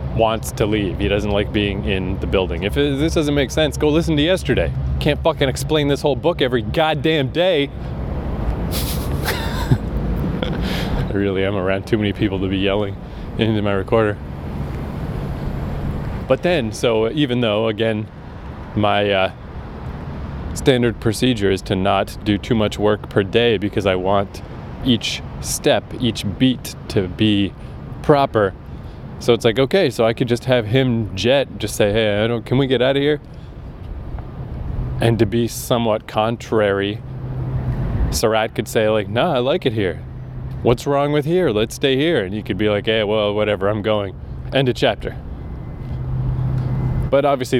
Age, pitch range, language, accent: 20-39, 100-130 Hz, English, American